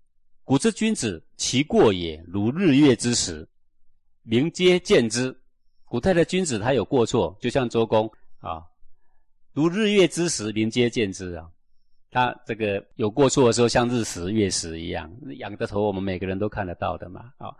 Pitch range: 95-125 Hz